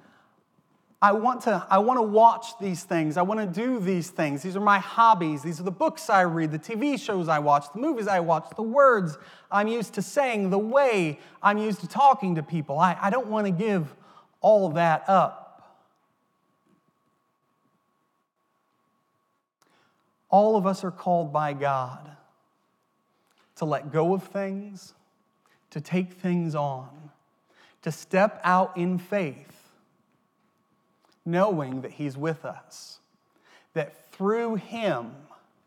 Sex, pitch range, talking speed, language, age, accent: male, 165-215 Hz, 140 wpm, English, 30-49, American